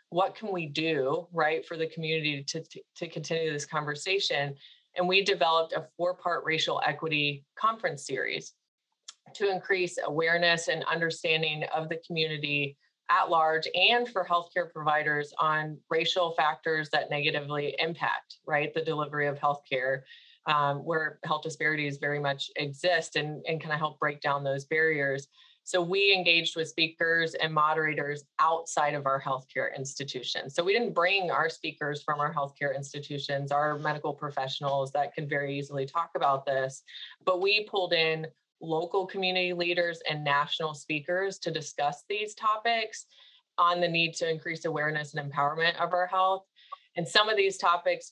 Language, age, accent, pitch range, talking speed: English, 30-49, American, 145-175 Hz, 155 wpm